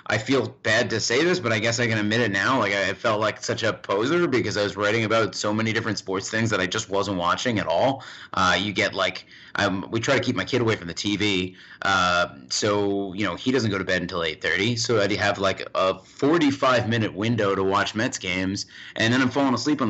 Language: English